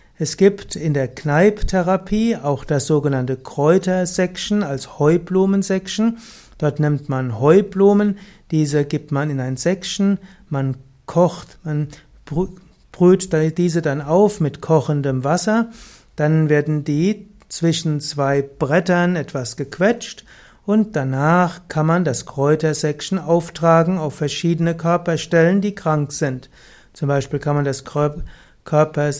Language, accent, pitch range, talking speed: German, German, 145-180 Hz, 120 wpm